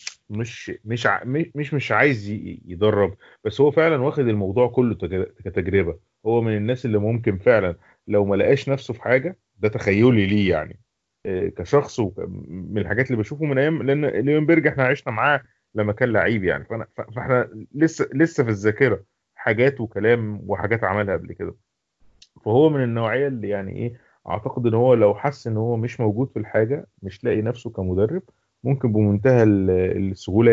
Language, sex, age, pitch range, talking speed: Arabic, male, 30-49, 105-135 Hz, 155 wpm